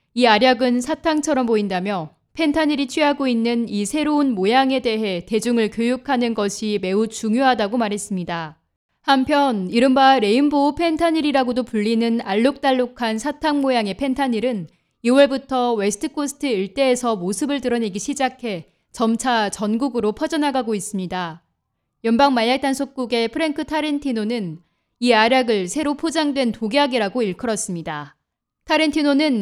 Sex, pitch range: female, 215-280 Hz